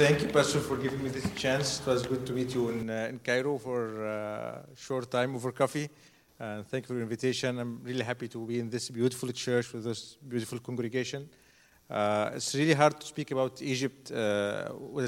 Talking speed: 210 wpm